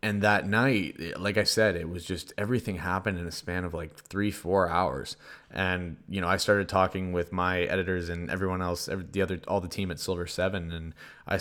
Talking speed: 215 wpm